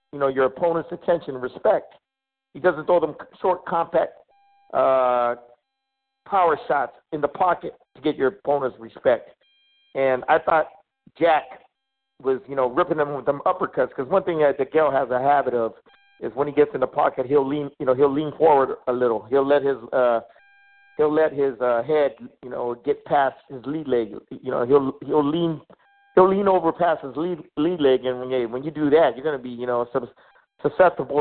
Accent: American